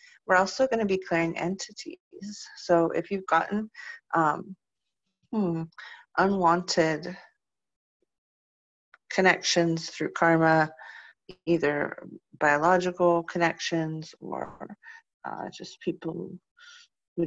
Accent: American